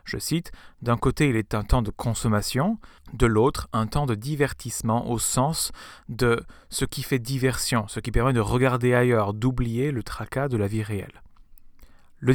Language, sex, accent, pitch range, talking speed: French, male, French, 110-135 Hz, 180 wpm